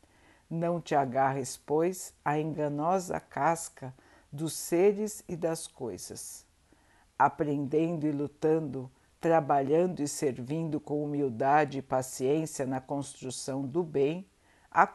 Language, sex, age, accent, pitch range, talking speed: Portuguese, female, 60-79, Brazilian, 125-160 Hz, 105 wpm